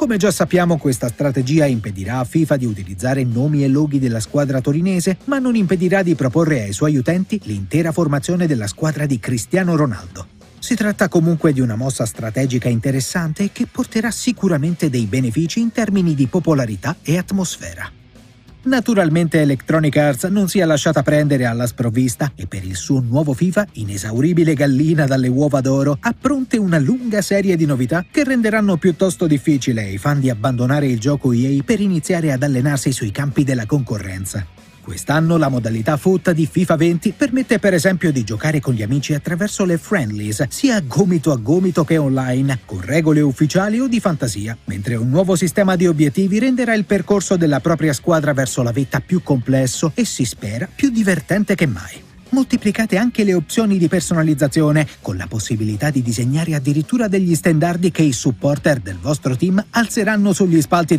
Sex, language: male, Italian